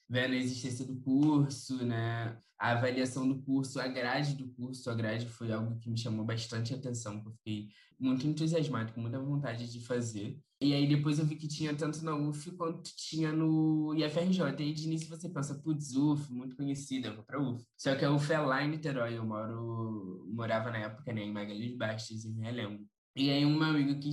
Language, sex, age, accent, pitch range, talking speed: Portuguese, male, 10-29, Brazilian, 115-145 Hz, 220 wpm